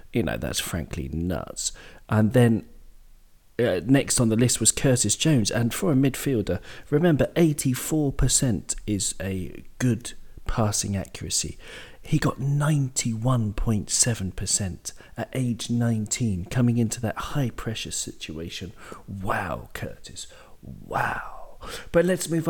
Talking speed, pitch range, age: 115 wpm, 105-140 Hz, 40-59